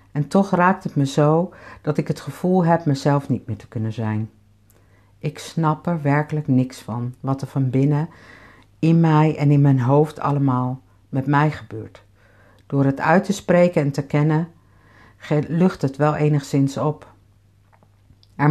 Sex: female